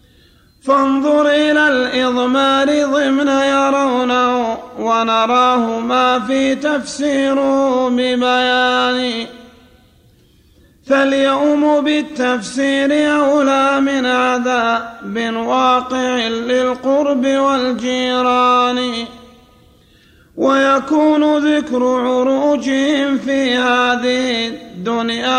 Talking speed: 60 wpm